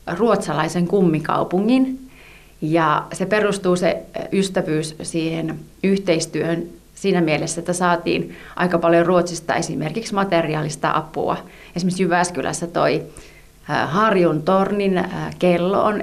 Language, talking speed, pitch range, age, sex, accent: Finnish, 95 wpm, 165-195 Hz, 30-49, female, native